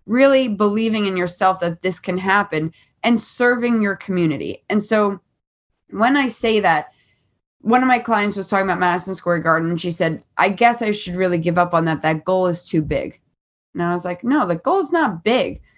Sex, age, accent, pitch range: female, 20-39, American, 185-255 Hz